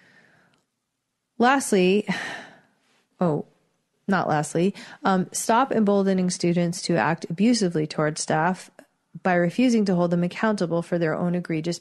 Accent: American